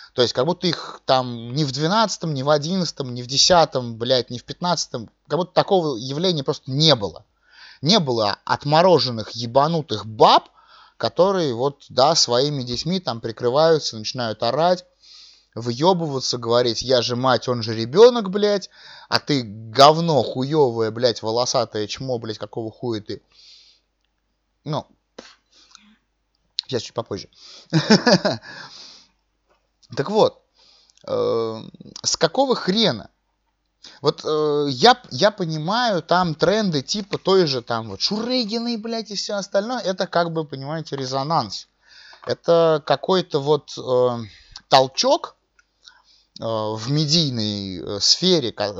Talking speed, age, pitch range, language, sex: 125 wpm, 20-39, 120-185 Hz, Russian, male